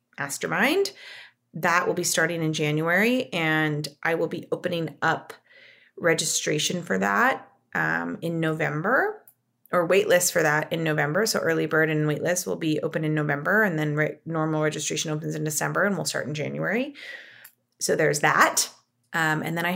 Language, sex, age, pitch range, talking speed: English, female, 30-49, 160-215 Hz, 165 wpm